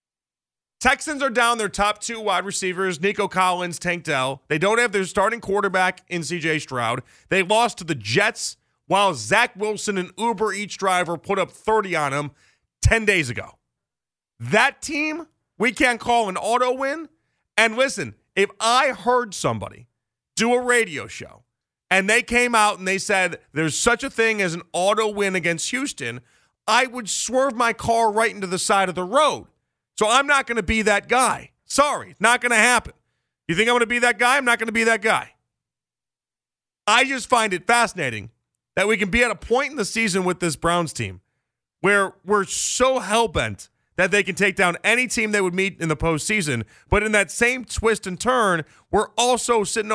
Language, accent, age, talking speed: English, American, 40-59, 195 wpm